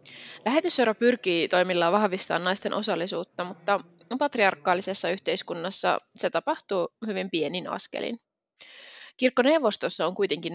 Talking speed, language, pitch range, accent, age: 95 wpm, Finnish, 180-235 Hz, native, 20-39